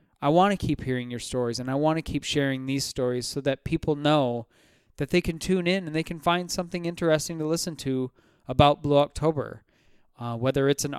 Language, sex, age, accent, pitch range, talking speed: English, male, 20-39, American, 140-170 Hz, 220 wpm